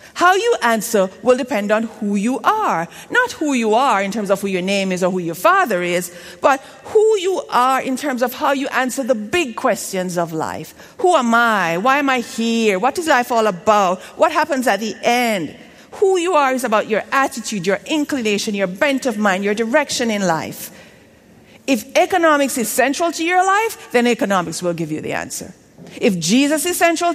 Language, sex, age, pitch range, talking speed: English, female, 50-69, 195-315 Hz, 205 wpm